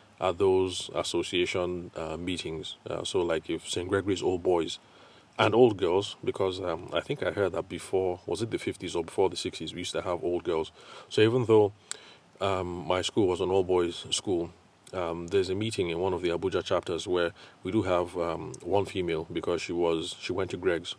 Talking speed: 210 wpm